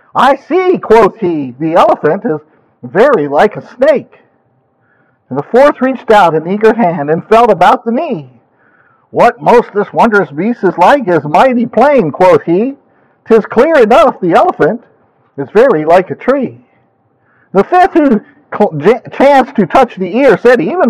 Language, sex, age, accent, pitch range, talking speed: English, male, 50-69, American, 165-235 Hz, 160 wpm